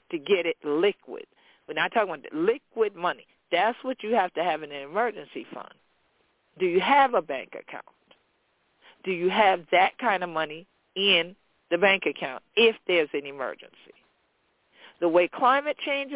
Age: 50-69